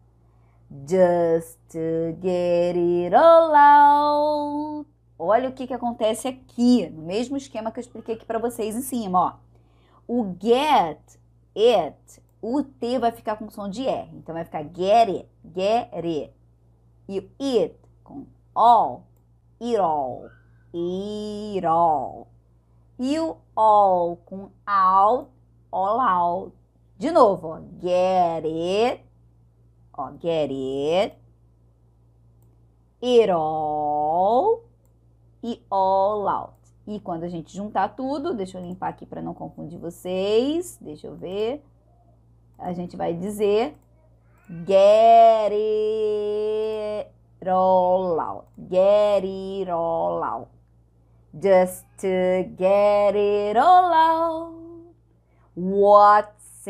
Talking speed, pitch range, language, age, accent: 110 wpm, 150-230 Hz, Portuguese, 20-39, Brazilian